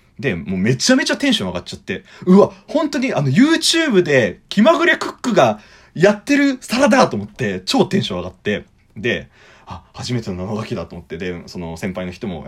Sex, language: male, Japanese